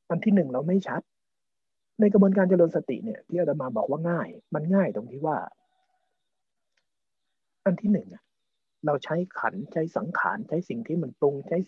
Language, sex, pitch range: Thai, male, 135-195 Hz